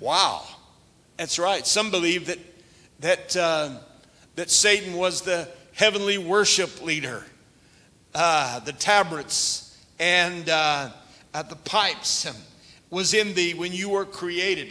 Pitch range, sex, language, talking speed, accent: 170-215 Hz, male, English, 120 wpm, American